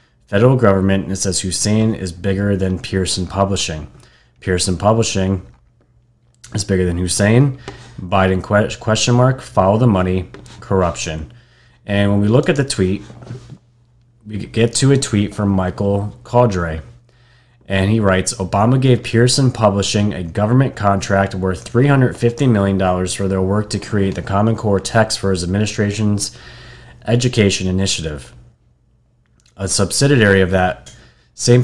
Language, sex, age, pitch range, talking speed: English, male, 30-49, 95-115 Hz, 135 wpm